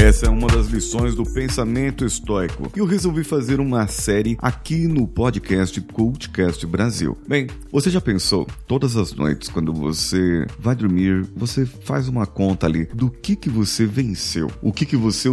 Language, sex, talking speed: Portuguese, male, 170 wpm